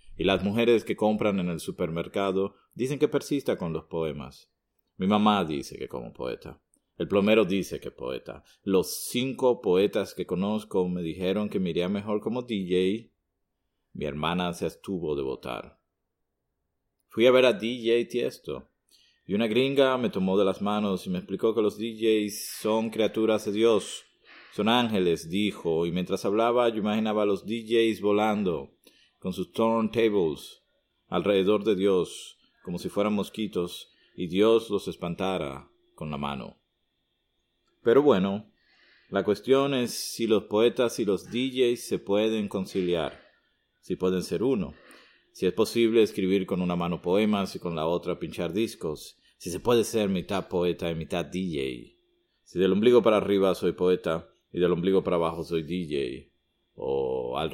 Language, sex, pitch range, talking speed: Dutch, male, 90-115 Hz, 160 wpm